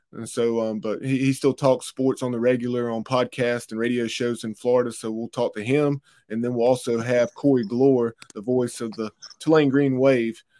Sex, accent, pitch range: male, American, 120-135 Hz